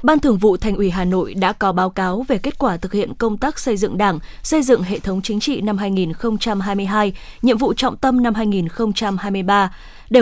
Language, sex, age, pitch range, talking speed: Vietnamese, female, 20-39, 195-240 Hz, 210 wpm